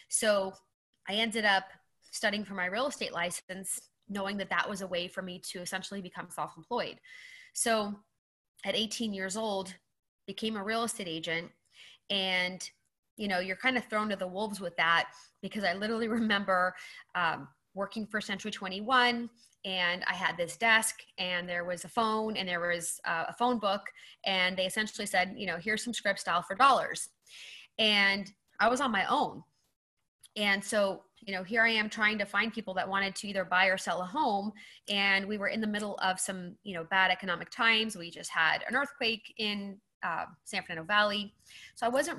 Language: English